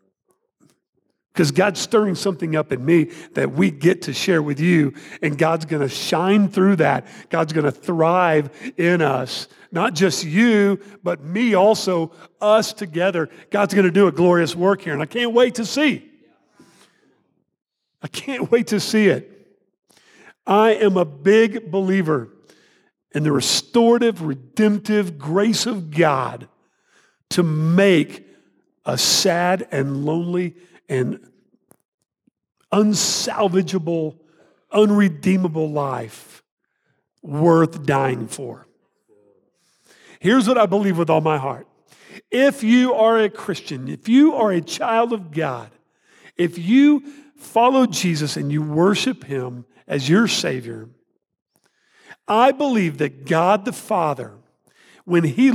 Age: 50-69